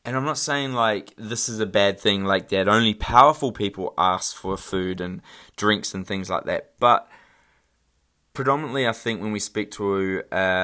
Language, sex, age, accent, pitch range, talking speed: English, male, 20-39, Australian, 95-110 Hz, 185 wpm